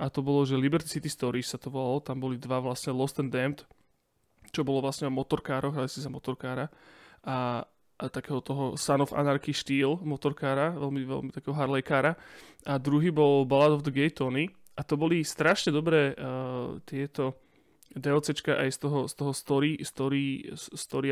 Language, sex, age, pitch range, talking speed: Slovak, male, 20-39, 135-150 Hz, 180 wpm